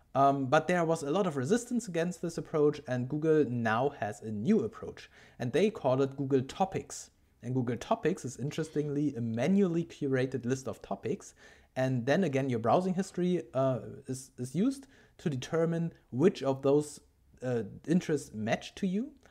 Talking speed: 170 wpm